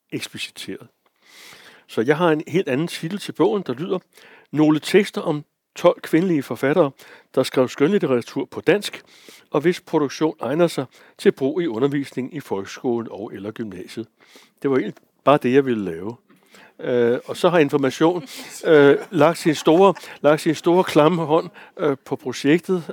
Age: 60-79